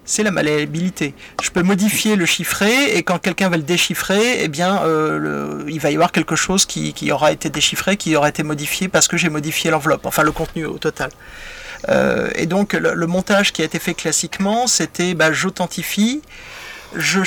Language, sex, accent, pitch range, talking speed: French, male, French, 165-200 Hz, 190 wpm